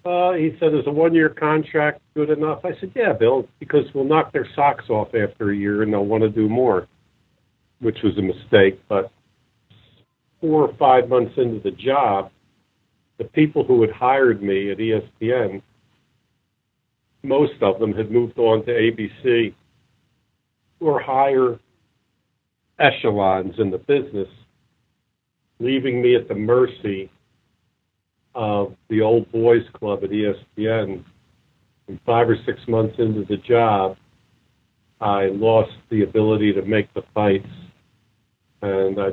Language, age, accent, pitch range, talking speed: English, 50-69, American, 100-125 Hz, 145 wpm